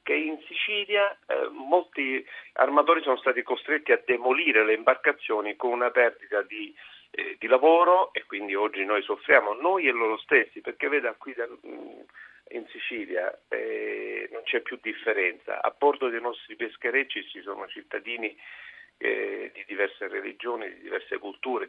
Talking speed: 150 wpm